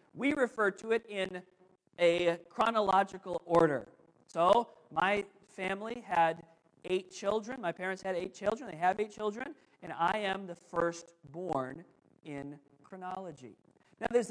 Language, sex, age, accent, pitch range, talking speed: English, male, 40-59, American, 170-230 Hz, 140 wpm